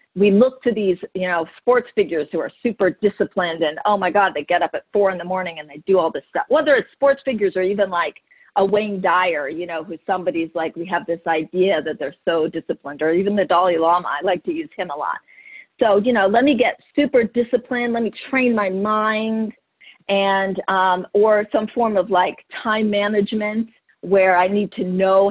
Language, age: English, 40-59